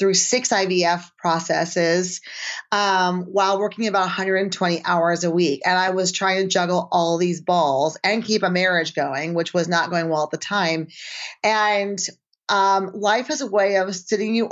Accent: American